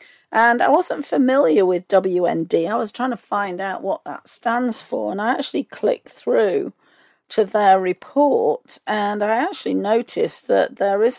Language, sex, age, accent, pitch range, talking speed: English, female, 40-59, British, 205-270 Hz, 165 wpm